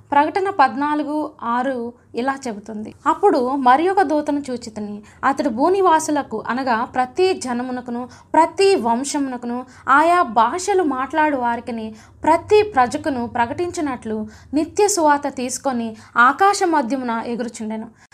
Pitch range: 235-310 Hz